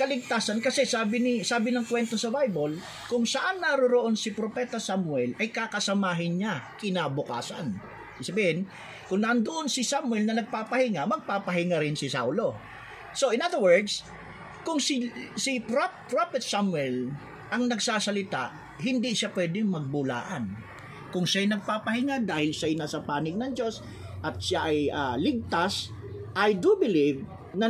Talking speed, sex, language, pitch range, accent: 135 wpm, male, Filipino, 170-250 Hz, native